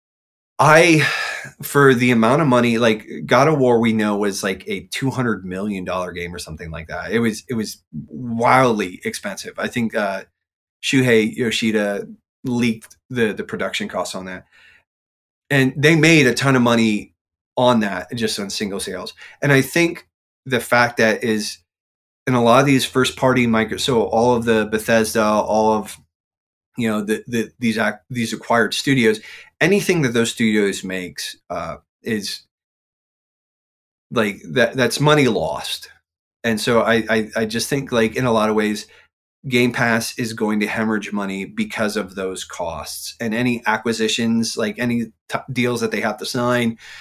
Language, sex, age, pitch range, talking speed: English, male, 30-49, 105-125 Hz, 170 wpm